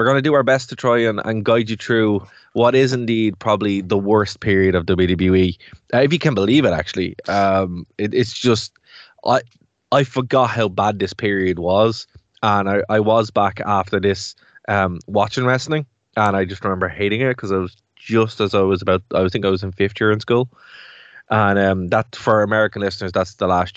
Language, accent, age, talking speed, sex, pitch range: English, Irish, 20-39, 205 wpm, male, 100-120 Hz